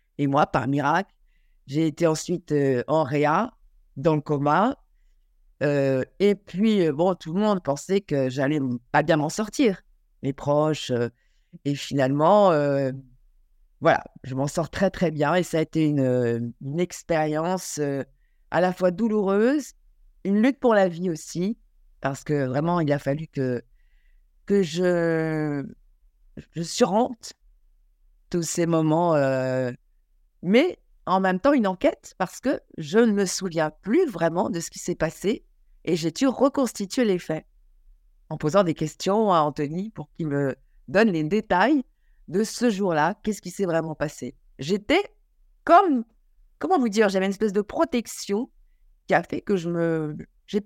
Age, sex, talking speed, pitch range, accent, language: 50-69, female, 160 wpm, 140-210 Hz, French, French